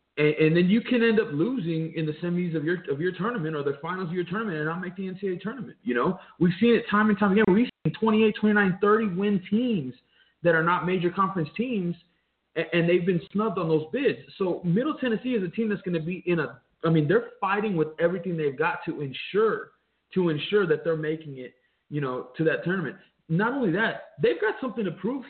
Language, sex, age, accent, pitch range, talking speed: English, male, 20-39, American, 165-215 Hz, 230 wpm